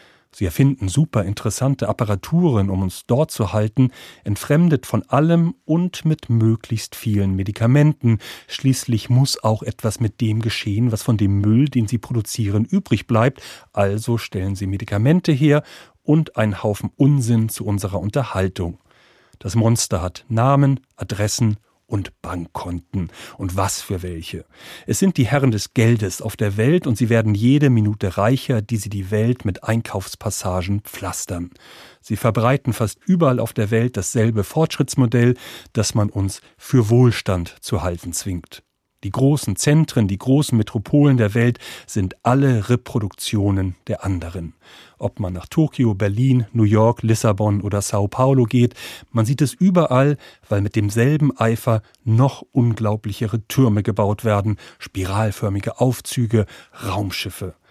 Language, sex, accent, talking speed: German, male, German, 140 wpm